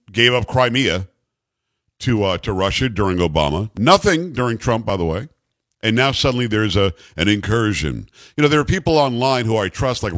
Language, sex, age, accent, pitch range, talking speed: English, male, 50-69, American, 110-145 Hz, 190 wpm